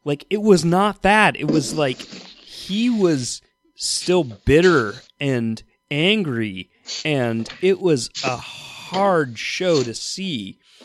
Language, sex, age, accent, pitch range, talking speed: English, male, 30-49, American, 135-185 Hz, 120 wpm